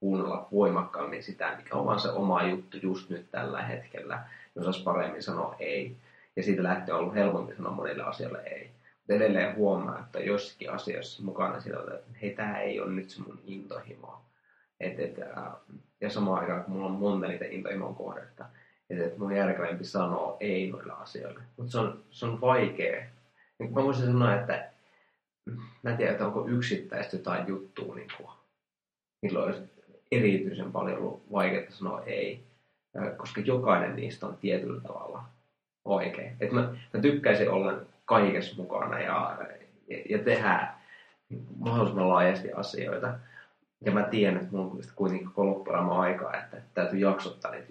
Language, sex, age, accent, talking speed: Finnish, male, 30-49, native, 155 wpm